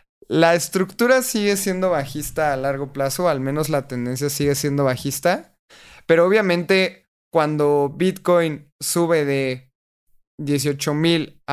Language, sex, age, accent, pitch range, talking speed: Spanish, male, 20-39, Mexican, 140-175 Hz, 115 wpm